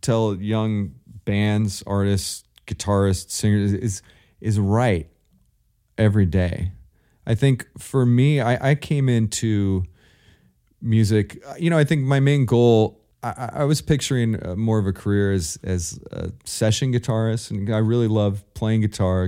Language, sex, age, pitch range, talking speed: English, male, 30-49, 90-110 Hz, 145 wpm